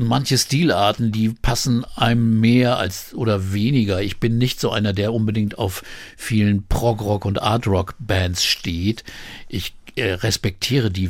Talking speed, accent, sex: 140 wpm, German, male